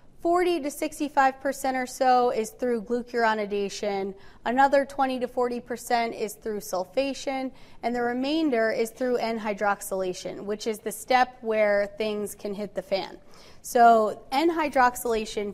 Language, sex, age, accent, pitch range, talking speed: English, female, 20-39, American, 205-255 Hz, 145 wpm